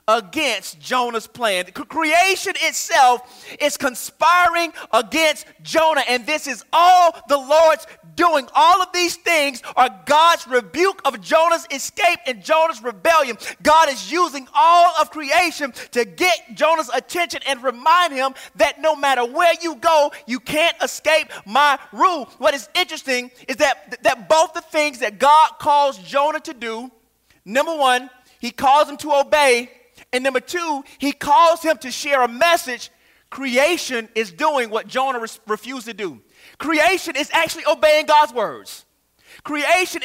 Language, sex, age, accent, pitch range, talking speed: English, male, 30-49, American, 250-325 Hz, 150 wpm